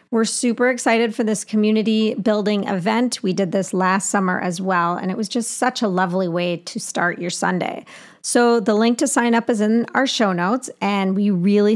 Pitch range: 195-235 Hz